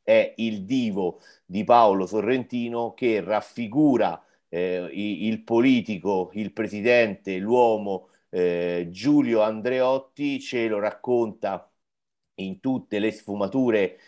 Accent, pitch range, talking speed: native, 95-120 Hz, 105 wpm